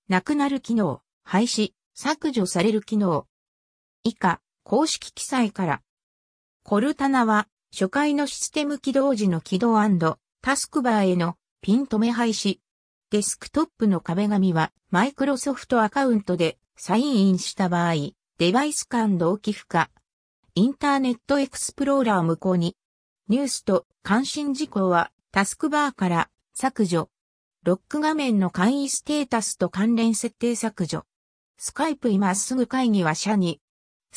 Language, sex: Japanese, female